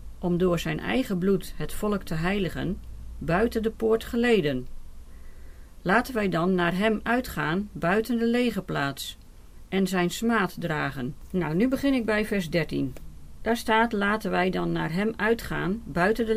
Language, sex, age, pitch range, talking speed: Dutch, female, 40-59, 170-220 Hz, 160 wpm